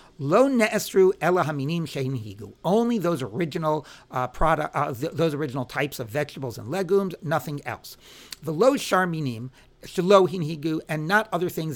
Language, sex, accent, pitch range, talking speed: English, male, American, 135-195 Hz, 150 wpm